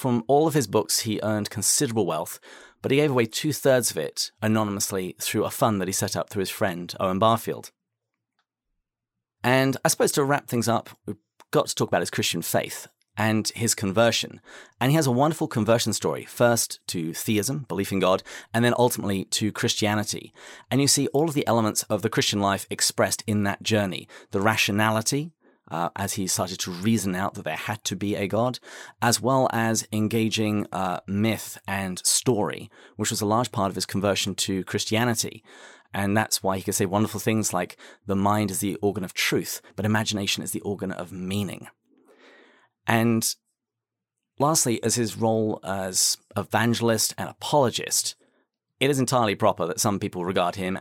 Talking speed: 185 wpm